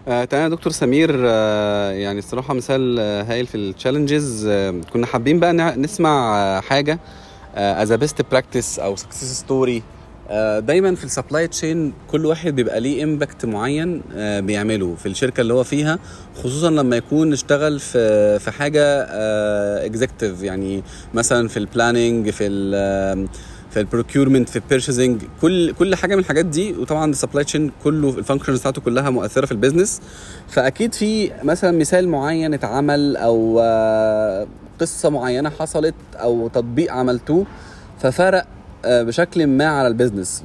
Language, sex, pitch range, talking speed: Arabic, male, 110-150 Hz, 140 wpm